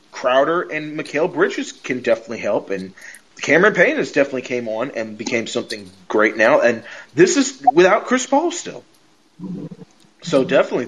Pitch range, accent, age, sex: 115-160 Hz, American, 30-49, male